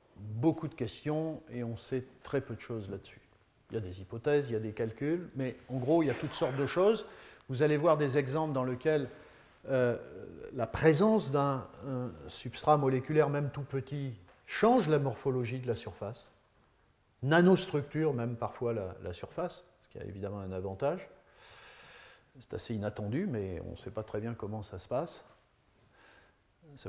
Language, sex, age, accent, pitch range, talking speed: French, male, 40-59, French, 110-145 Hz, 180 wpm